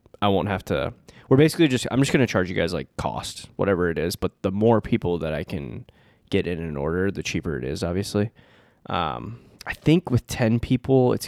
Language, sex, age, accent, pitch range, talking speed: English, male, 20-39, American, 95-120 Hz, 225 wpm